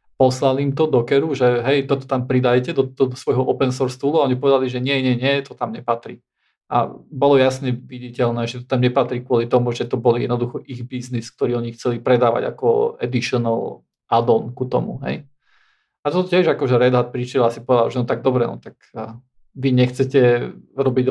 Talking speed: 195 wpm